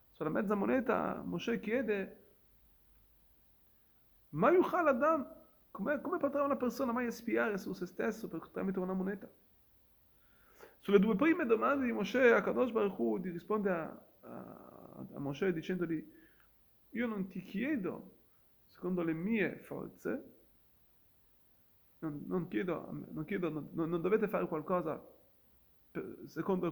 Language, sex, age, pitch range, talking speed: Italian, male, 30-49, 165-225 Hz, 125 wpm